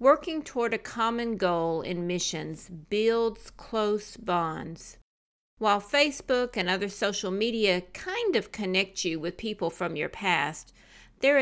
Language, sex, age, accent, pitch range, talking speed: English, female, 50-69, American, 175-225 Hz, 135 wpm